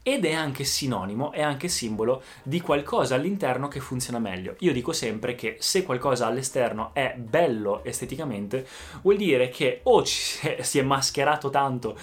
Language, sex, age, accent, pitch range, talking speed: Italian, male, 20-39, native, 110-140 Hz, 155 wpm